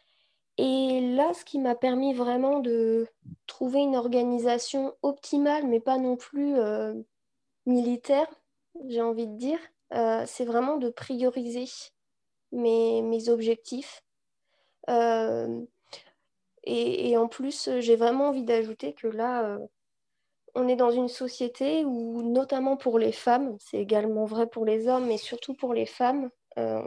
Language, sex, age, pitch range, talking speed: French, female, 20-39, 225-260 Hz, 145 wpm